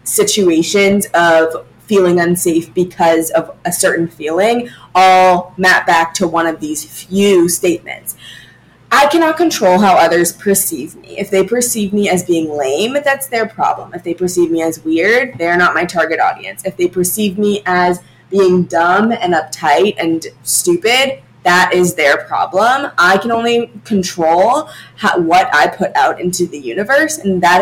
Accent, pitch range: American, 170-220 Hz